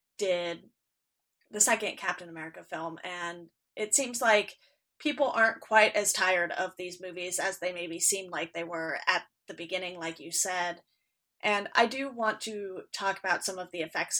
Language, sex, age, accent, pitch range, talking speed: English, female, 30-49, American, 180-215 Hz, 180 wpm